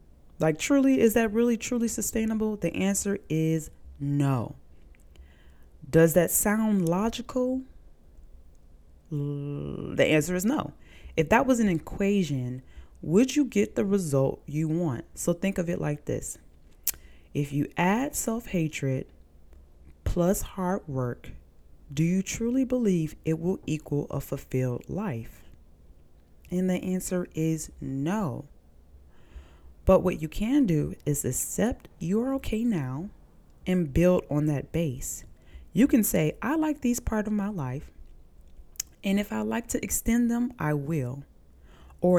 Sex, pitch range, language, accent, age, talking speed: female, 115-195 Hz, English, American, 20-39, 135 wpm